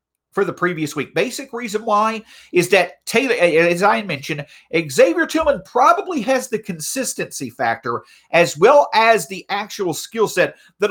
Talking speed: 155 wpm